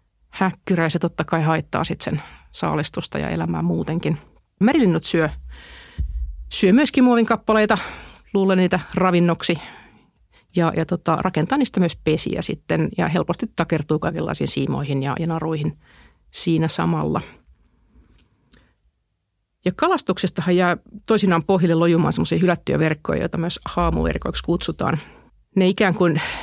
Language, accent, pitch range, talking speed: Finnish, native, 155-190 Hz, 125 wpm